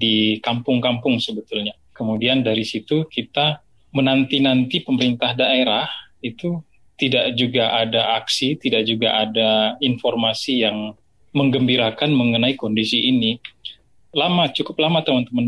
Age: 20-39